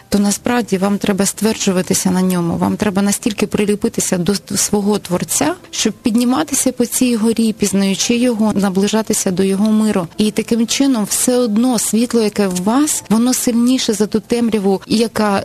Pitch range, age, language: 185-220 Hz, 20-39, Ukrainian